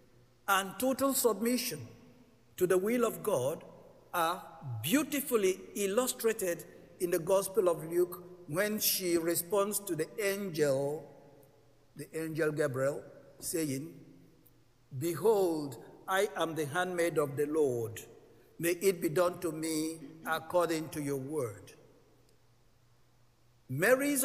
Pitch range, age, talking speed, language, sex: 130-180 Hz, 60-79, 110 wpm, English, male